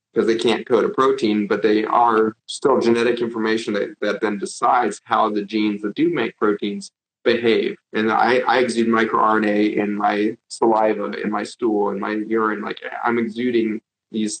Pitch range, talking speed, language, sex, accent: 105-120 Hz, 175 wpm, English, male, American